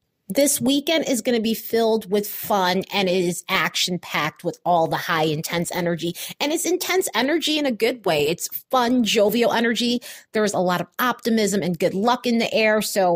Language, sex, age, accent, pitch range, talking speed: English, female, 30-49, American, 175-250 Hz, 200 wpm